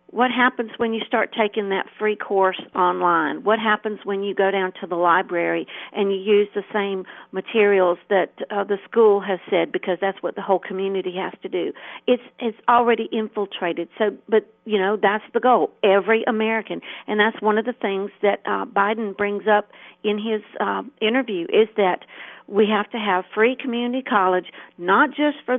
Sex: female